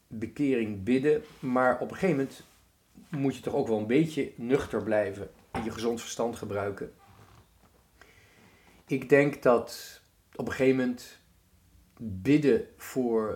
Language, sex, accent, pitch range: Dutch, male, Dutch, 95-135 Hz